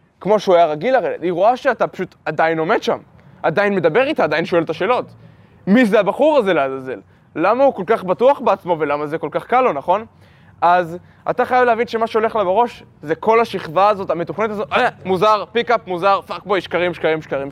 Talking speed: 200 wpm